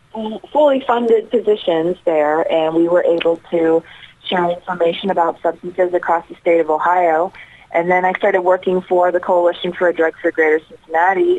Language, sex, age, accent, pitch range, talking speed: English, female, 30-49, American, 160-185 Hz, 170 wpm